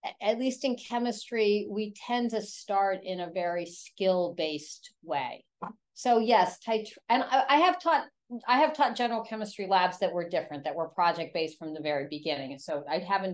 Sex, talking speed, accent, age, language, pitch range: female, 185 wpm, American, 50-69, English, 170-220 Hz